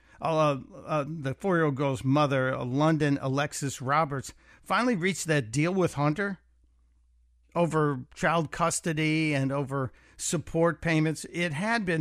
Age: 50-69